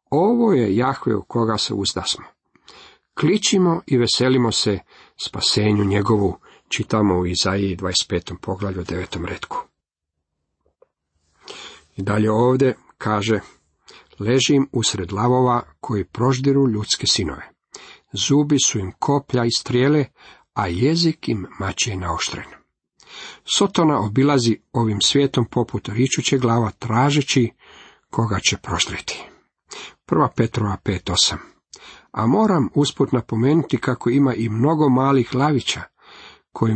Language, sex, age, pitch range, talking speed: Croatian, male, 50-69, 105-140 Hz, 110 wpm